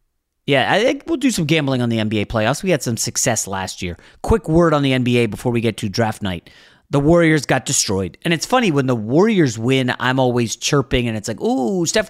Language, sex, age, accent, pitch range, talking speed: English, male, 30-49, American, 110-170 Hz, 235 wpm